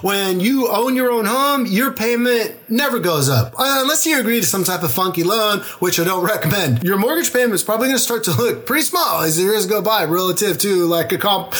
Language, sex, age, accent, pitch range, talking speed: English, male, 30-49, American, 175-245 Hz, 245 wpm